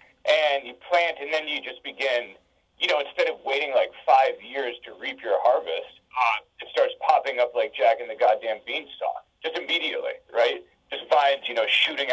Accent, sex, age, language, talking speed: American, male, 40-59, English, 190 wpm